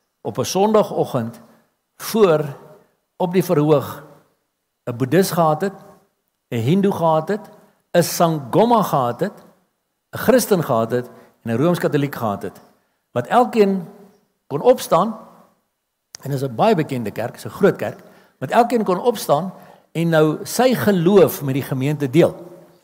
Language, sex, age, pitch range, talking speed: English, male, 60-79, 135-195 Hz, 145 wpm